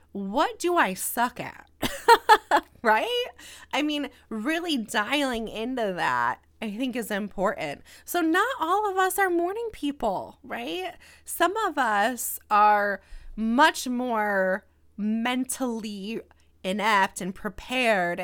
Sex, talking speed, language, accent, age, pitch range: female, 115 wpm, English, American, 20-39, 195-270 Hz